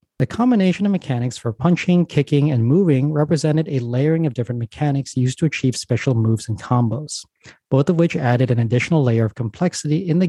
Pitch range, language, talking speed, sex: 115-155 Hz, English, 190 wpm, male